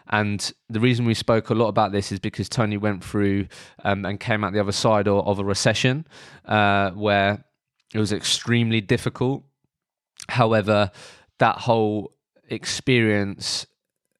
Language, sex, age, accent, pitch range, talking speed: English, male, 20-39, British, 100-115 Hz, 145 wpm